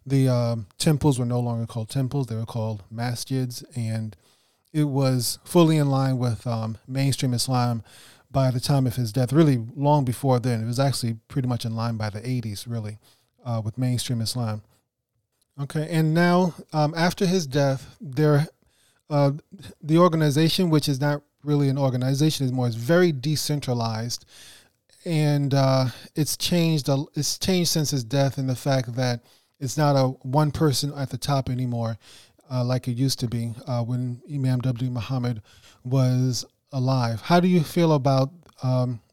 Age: 30-49